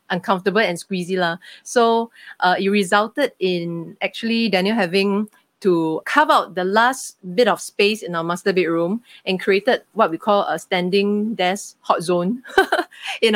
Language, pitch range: English, 175-210 Hz